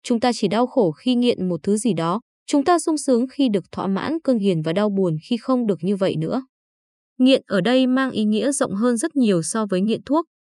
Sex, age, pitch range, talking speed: female, 20-39, 195-255 Hz, 255 wpm